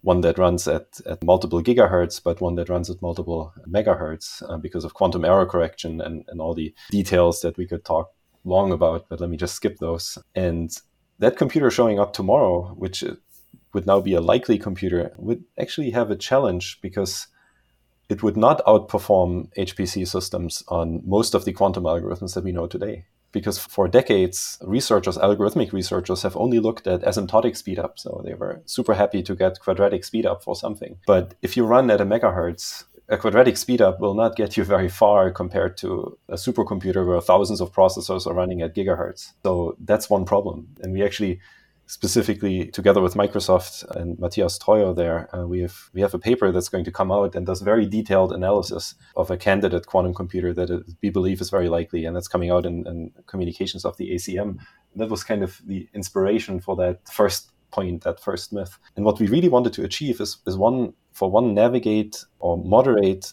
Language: English